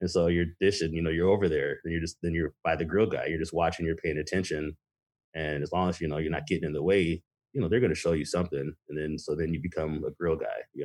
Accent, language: American, English